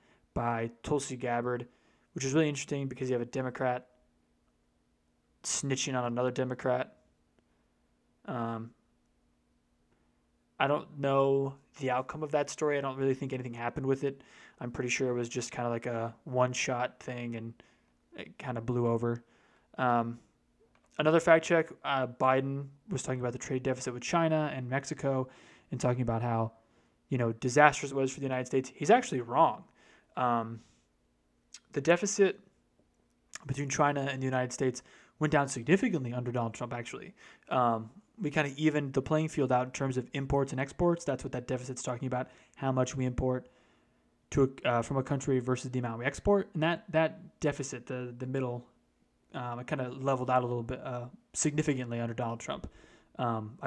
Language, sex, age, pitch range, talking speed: English, male, 20-39, 120-140 Hz, 180 wpm